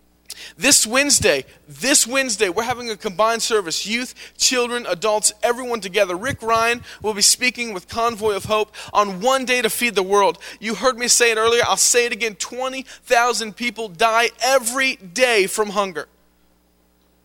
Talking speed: 165 wpm